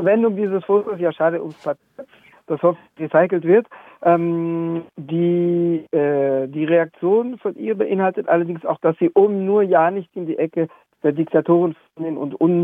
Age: 60-79